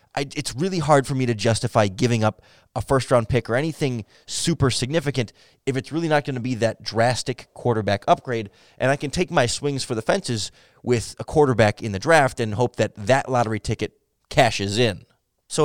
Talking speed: 195 wpm